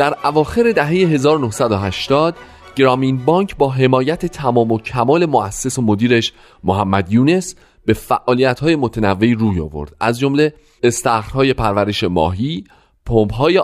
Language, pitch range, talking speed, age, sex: Persian, 105-155 Hz, 120 wpm, 30-49, male